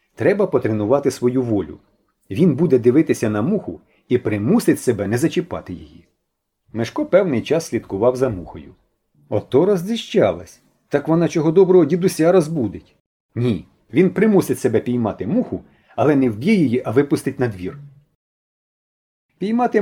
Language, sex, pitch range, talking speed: Ukrainian, male, 110-180 Hz, 135 wpm